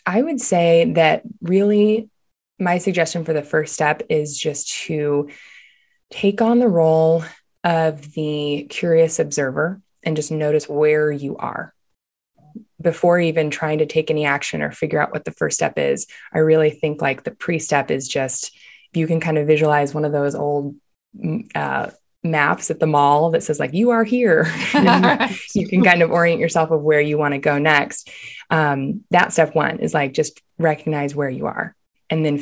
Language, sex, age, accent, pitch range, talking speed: English, female, 20-39, American, 145-165 Hz, 180 wpm